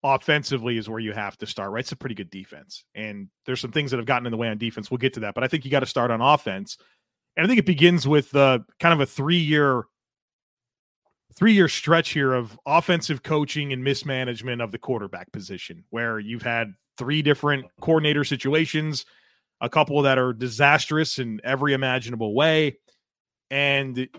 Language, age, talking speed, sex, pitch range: English, 30-49, 195 wpm, male, 125-150 Hz